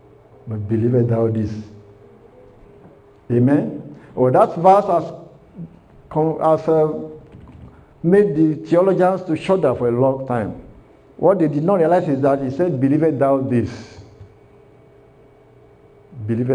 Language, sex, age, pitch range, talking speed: English, male, 60-79, 120-170 Hz, 125 wpm